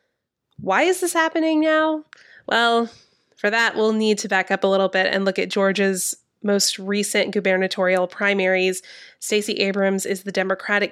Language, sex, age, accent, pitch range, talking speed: English, female, 20-39, American, 185-215 Hz, 160 wpm